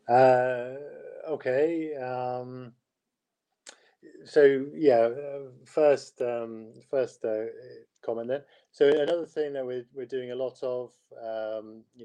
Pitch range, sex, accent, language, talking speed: 110-155 Hz, male, British, Turkish, 120 wpm